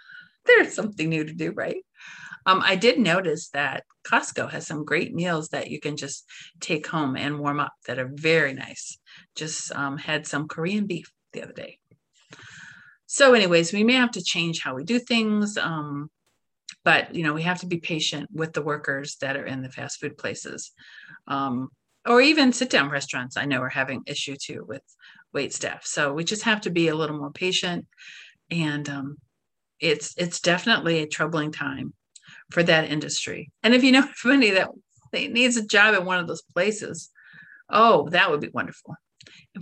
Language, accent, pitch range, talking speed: English, American, 150-200 Hz, 190 wpm